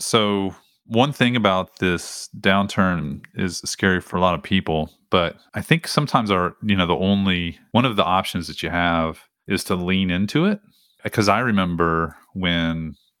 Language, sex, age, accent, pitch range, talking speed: English, male, 30-49, American, 85-100 Hz, 175 wpm